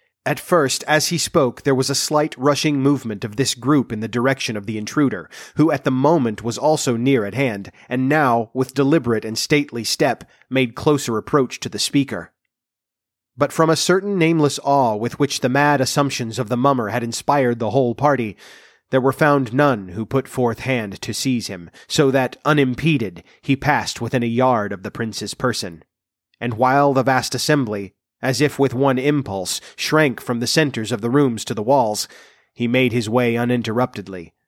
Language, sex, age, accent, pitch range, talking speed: English, male, 30-49, American, 110-140 Hz, 190 wpm